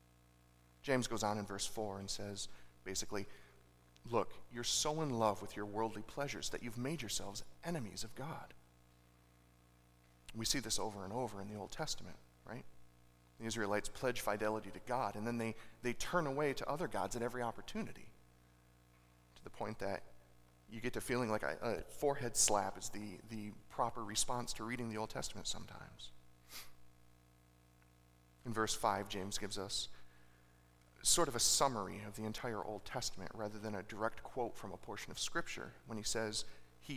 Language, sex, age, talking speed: English, male, 40-59, 175 wpm